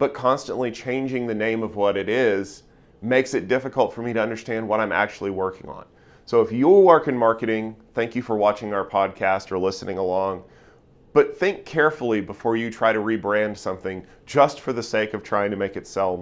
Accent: American